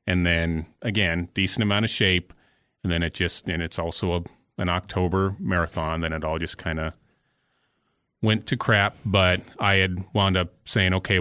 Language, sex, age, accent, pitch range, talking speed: English, male, 30-49, American, 85-100 Hz, 175 wpm